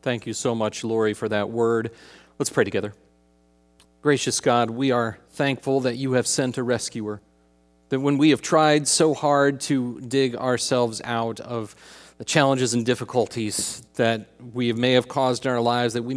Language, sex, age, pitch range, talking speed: English, male, 40-59, 100-130 Hz, 180 wpm